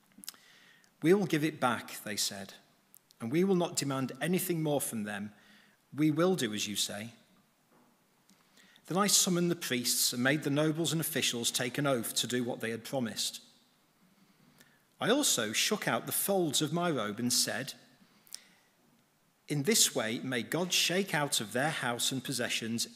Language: English